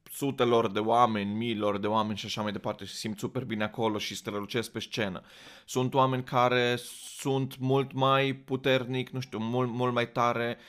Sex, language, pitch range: male, Romanian, 110-130 Hz